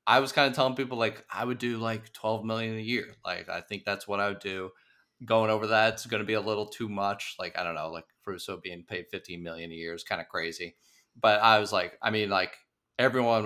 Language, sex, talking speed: English, male, 260 wpm